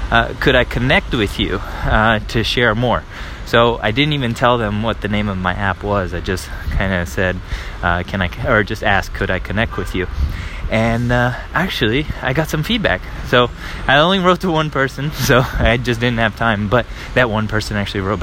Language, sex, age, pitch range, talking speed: English, male, 20-39, 100-125 Hz, 215 wpm